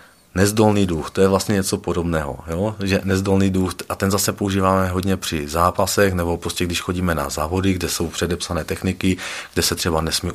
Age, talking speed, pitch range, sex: 40-59, 185 wpm, 85-100 Hz, male